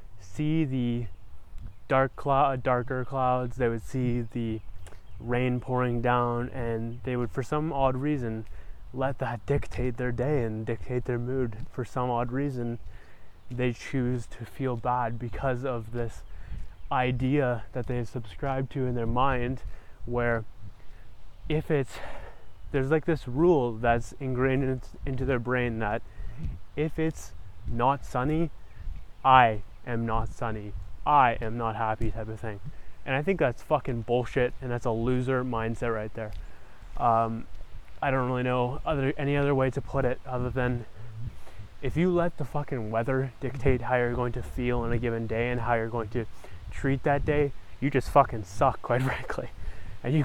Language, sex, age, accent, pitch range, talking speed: English, male, 20-39, American, 110-135 Hz, 160 wpm